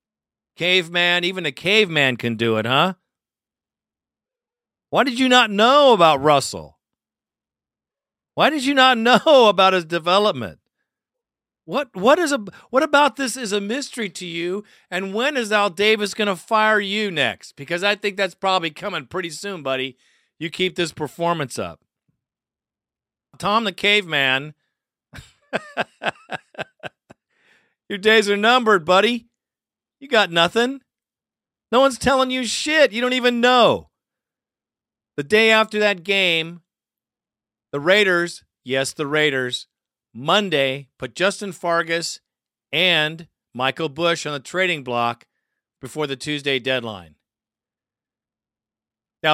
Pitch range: 150-215 Hz